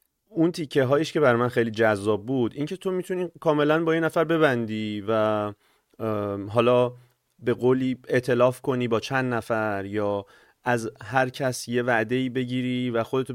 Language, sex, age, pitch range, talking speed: Persian, male, 30-49, 105-130 Hz, 155 wpm